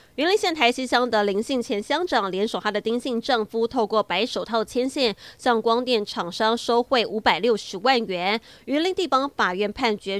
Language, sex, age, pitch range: Chinese, female, 20-39, 205-250 Hz